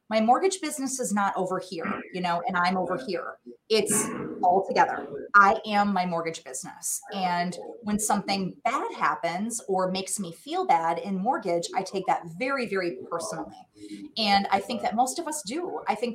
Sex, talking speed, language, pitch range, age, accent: female, 180 wpm, English, 190-270 Hz, 30-49, American